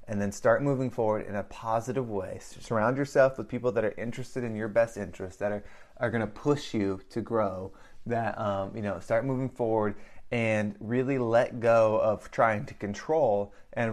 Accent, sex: American, male